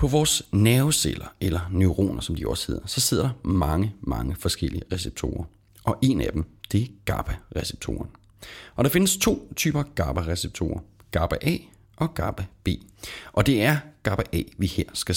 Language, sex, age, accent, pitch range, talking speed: Danish, male, 30-49, native, 90-120 Hz, 155 wpm